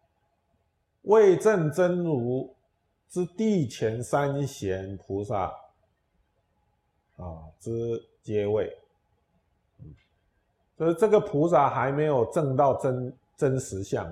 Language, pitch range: Chinese, 95-145 Hz